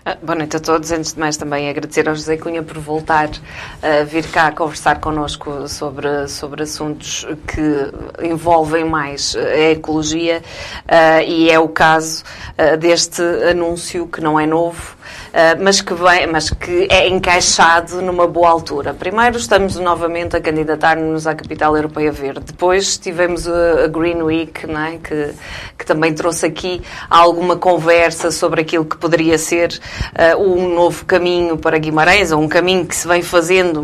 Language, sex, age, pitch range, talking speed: Portuguese, female, 20-39, 160-185 Hz, 155 wpm